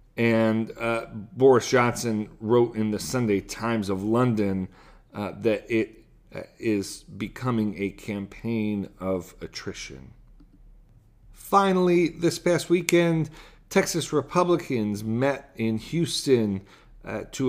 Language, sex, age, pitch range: English, male, 40-59, 105-140 Hz